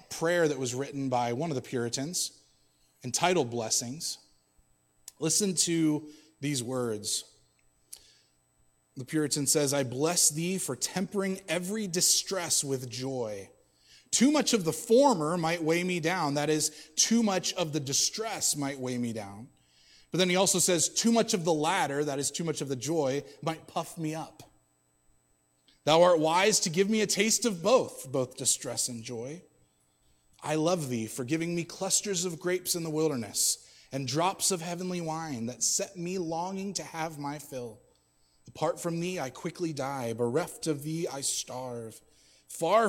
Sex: male